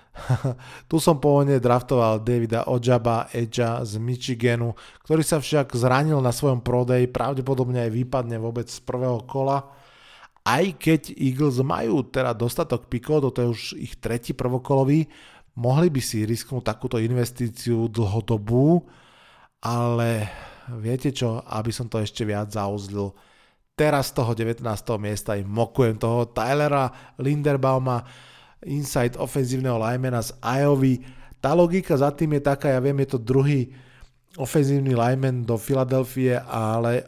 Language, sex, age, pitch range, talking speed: Slovak, male, 20-39, 120-135 Hz, 135 wpm